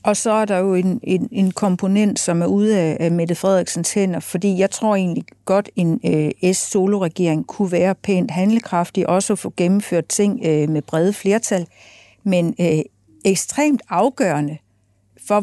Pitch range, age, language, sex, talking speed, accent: 165-200 Hz, 50-69, Danish, female, 165 wpm, native